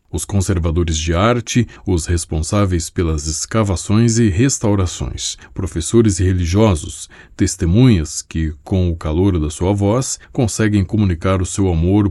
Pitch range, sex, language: 90-110 Hz, male, Portuguese